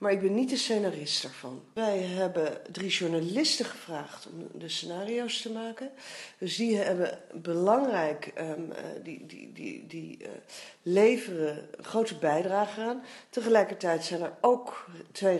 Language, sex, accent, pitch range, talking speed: Dutch, female, Dutch, 170-220 Hz, 140 wpm